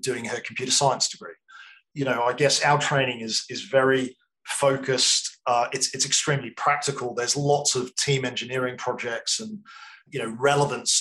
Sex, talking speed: male, 165 wpm